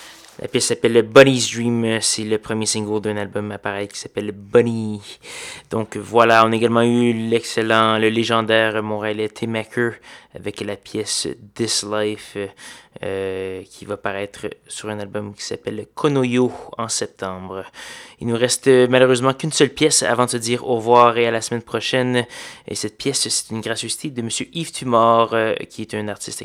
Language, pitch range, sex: French, 105-125 Hz, male